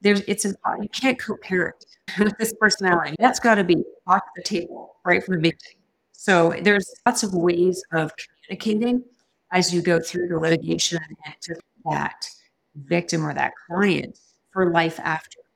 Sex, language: female, English